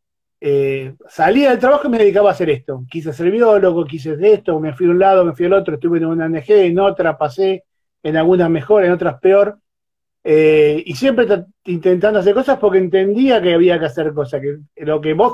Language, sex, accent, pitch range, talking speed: Spanish, male, Argentinian, 155-205 Hz, 215 wpm